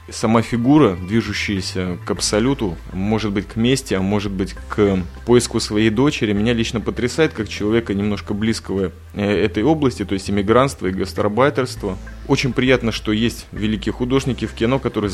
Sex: male